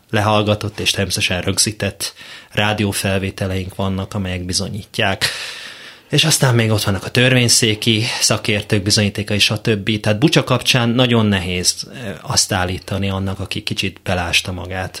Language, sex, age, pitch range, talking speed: Hungarian, male, 30-49, 95-115 Hz, 125 wpm